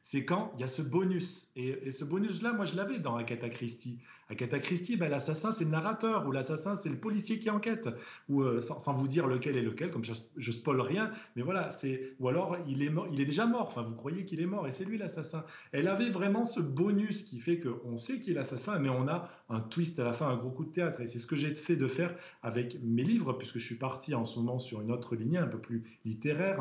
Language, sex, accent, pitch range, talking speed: French, male, French, 120-175 Hz, 260 wpm